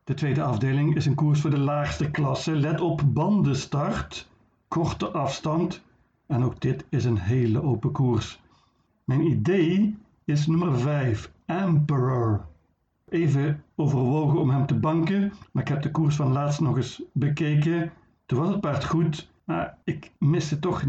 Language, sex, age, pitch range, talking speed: Dutch, male, 60-79, 130-155 Hz, 155 wpm